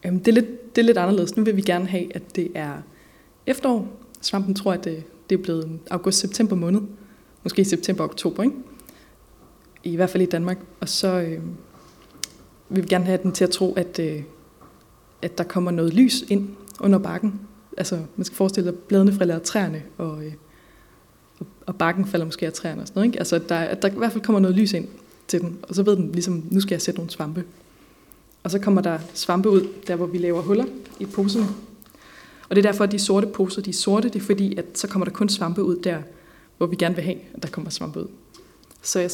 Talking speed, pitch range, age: 220 wpm, 175-205 Hz, 20-39